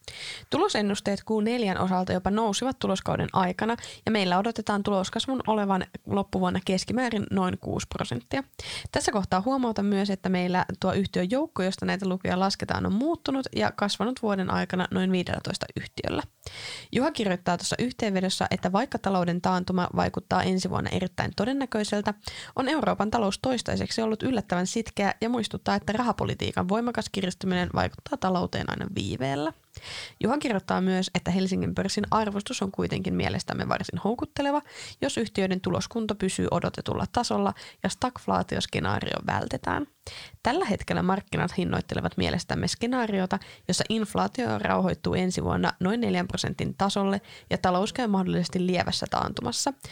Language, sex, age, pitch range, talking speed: Finnish, female, 20-39, 185-225 Hz, 135 wpm